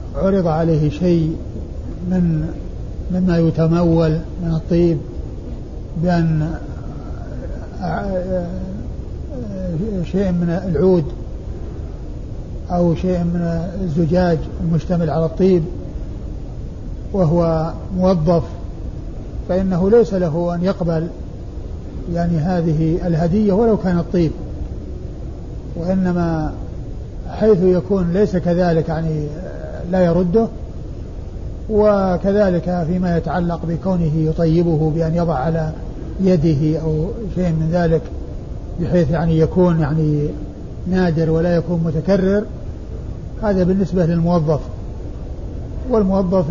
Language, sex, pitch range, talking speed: Arabic, male, 160-185 Hz, 85 wpm